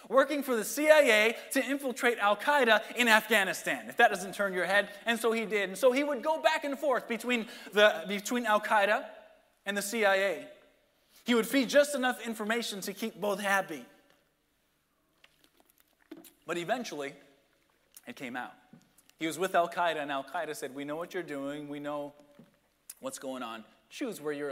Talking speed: 170 wpm